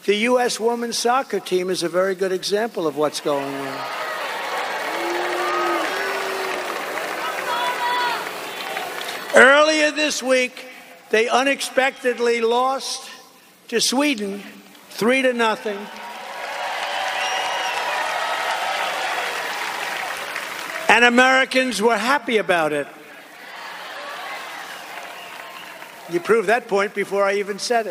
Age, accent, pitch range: 60-79, American, 185-240 Hz